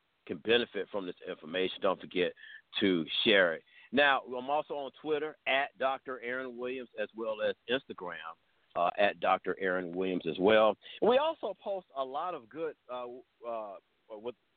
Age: 50-69